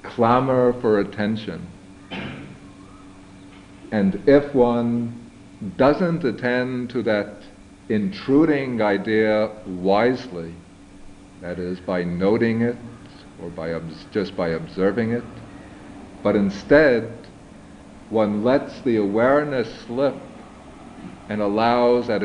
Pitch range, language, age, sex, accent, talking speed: 95-110 Hz, English, 60-79, male, American, 90 wpm